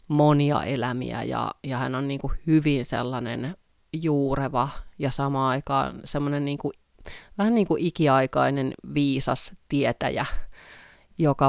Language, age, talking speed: Finnish, 30-49, 115 wpm